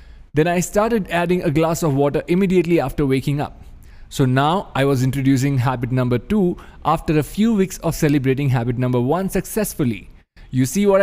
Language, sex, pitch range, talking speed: English, male, 130-180 Hz, 180 wpm